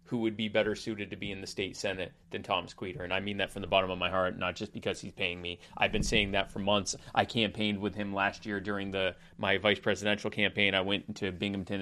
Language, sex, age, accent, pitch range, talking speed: English, male, 30-49, American, 105-150 Hz, 265 wpm